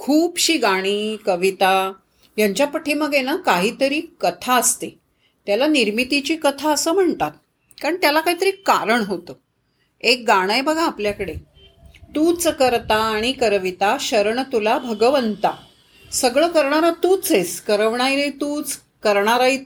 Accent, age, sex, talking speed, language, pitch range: native, 40-59, female, 120 wpm, Marathi, 225-320 Hz